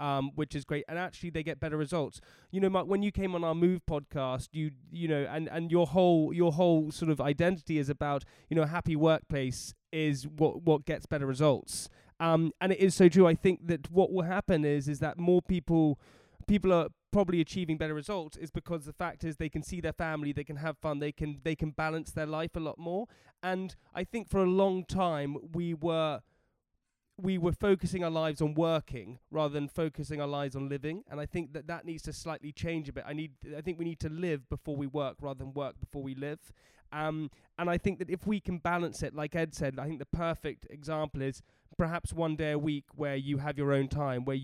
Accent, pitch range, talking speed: British, 145-175 Hz, 235 wpm